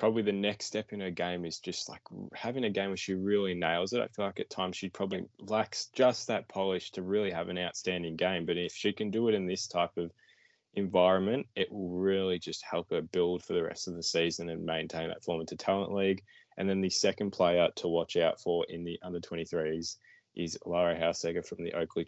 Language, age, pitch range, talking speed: English, 10-29, 85-100 Hz, 230 wpm